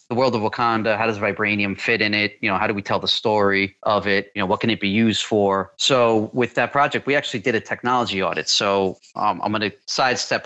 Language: English